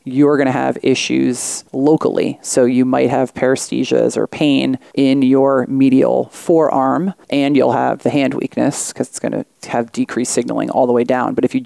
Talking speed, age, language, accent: 190 wpm, 30-49, English, American